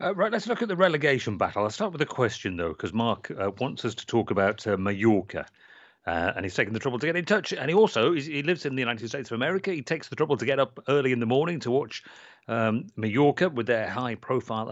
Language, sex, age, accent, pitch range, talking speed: English, male, 40-59, British, 105-135 Hz, 255 wpm